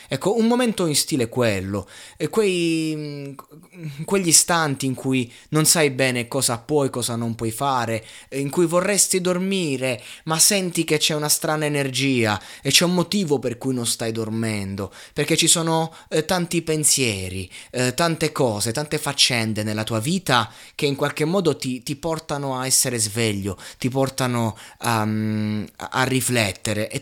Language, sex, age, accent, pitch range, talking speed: Italian, male, 20-39, native, 115-150 Hz, 150 wpm